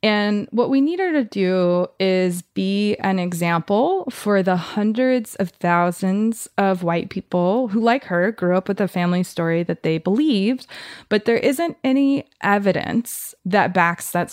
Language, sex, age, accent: English, female, 20-39, American